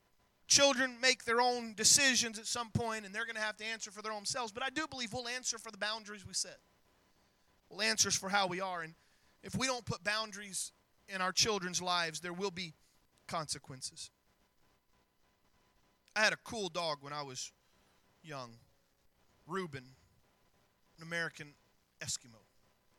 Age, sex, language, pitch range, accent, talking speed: 30-49, male, English, 150-225 Hz, American, 165 wpm